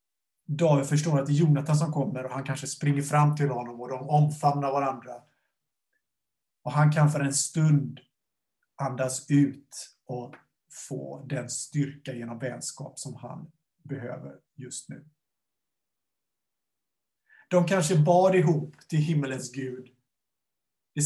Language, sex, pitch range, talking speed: Swedish, male, 130-155 Hz, 130 wpm